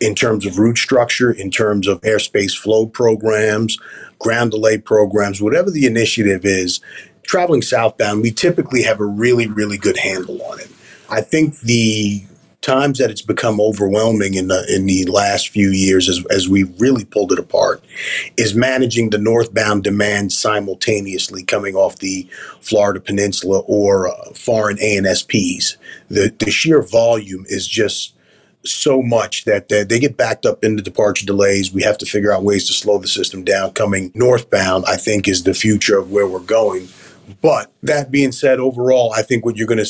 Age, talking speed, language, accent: 30-49, 175 wpm, English, American